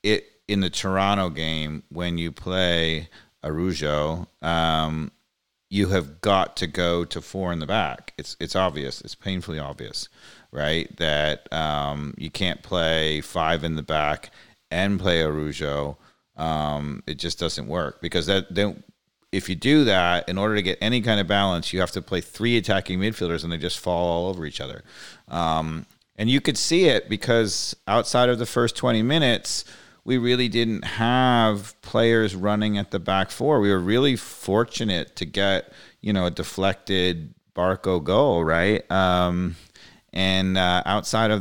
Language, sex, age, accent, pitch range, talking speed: English, male, 40-59, American, 85-105 Hz, 165 wpm